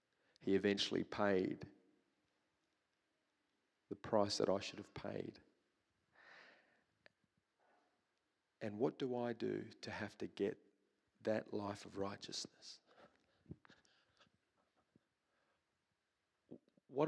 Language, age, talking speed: English, 40-59, 85 wpm